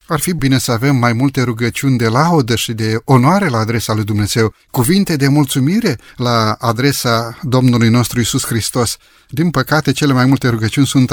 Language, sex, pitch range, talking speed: Romanian, male, 115-150 Hz, 180 wpm